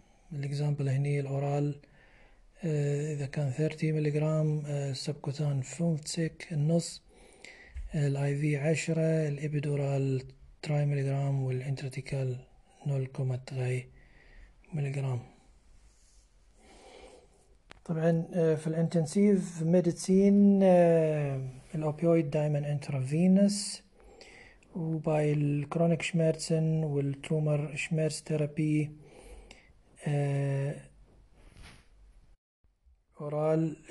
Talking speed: 55 wpm